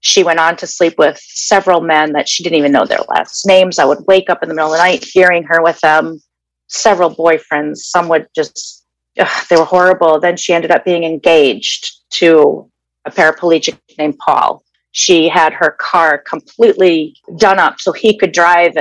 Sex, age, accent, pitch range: female, 30-49, American, 165-195 Hz